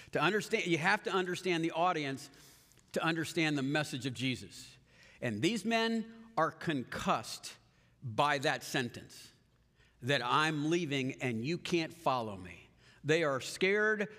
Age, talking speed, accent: 50-69, 140 wpm, American